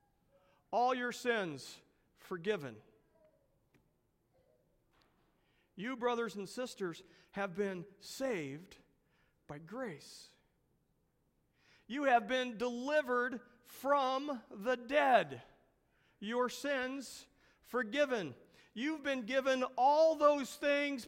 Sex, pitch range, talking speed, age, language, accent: male, 190-260 Hz, 85 wpm, 50-69, English, American